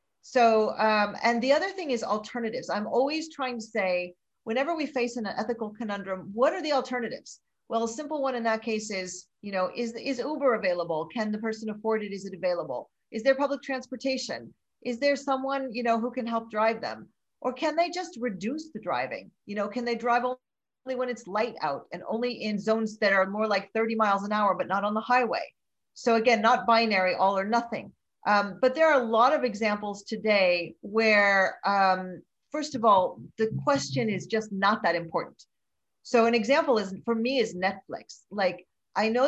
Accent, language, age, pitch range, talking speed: American, English, 40-59, 205-255 Hz, 200 wpm